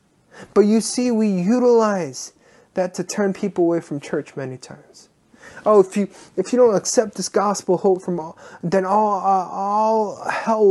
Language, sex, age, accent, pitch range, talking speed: English, male, 20-39, American, 165-200 Hz, 175 wpm